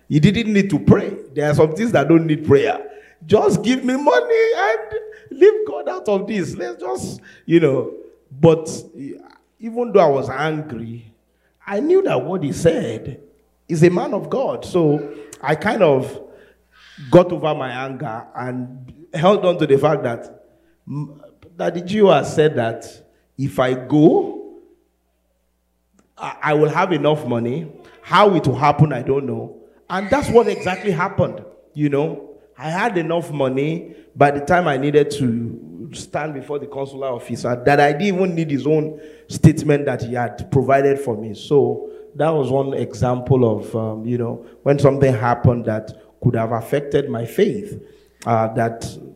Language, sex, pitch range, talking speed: English, male, 120-170 Hz, 165 wpm